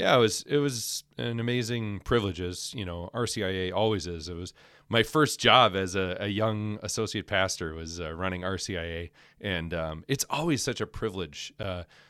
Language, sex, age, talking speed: English, male, 30-49, 185 wpm